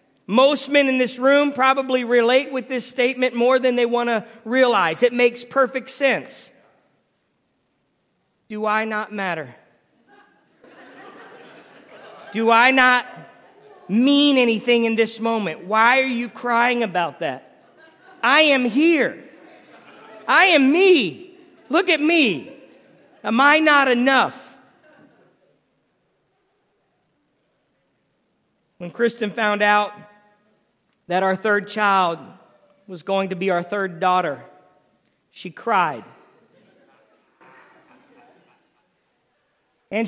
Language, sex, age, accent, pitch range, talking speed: English, male, 40-59, American, 200-265 Hz, 105 wpm